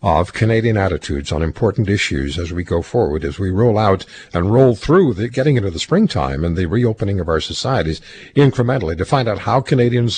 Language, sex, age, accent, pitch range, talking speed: English, male, 50-69, American, 90-135 Hz, 200 wpm